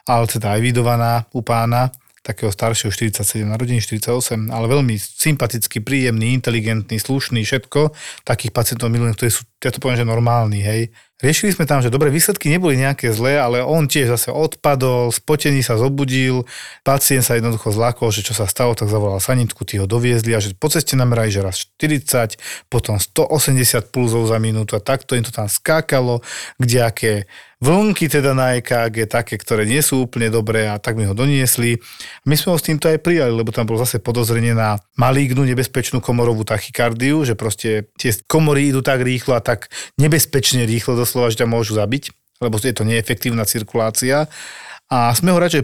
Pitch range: 115-135 Hz